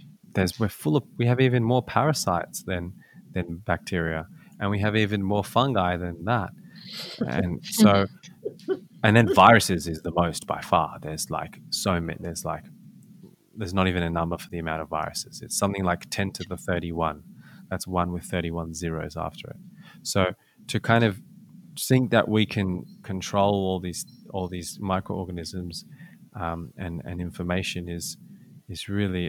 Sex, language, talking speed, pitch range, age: male, English, 165 wpm, 90-115 Hz, 20-39